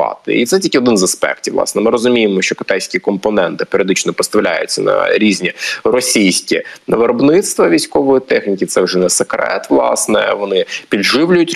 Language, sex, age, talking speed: Ukrainian, male, 20-39, 140 wpm